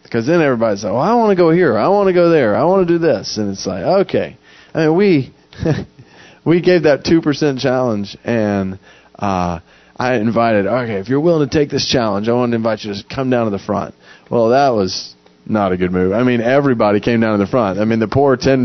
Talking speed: 240 wpm